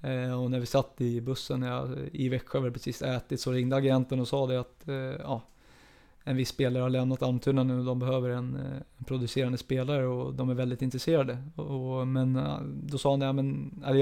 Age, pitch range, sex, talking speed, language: 20-39, 125-135 Hz, male, 195 wpm, Swedish